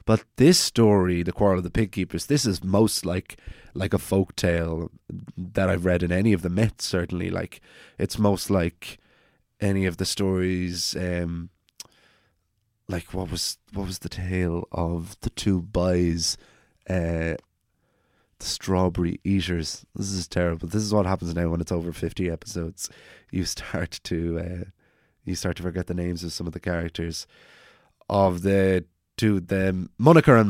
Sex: male